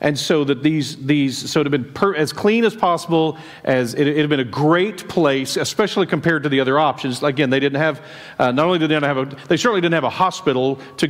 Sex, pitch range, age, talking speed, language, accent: male, 140-170 Hz, 40-59, 255 wpm, English, American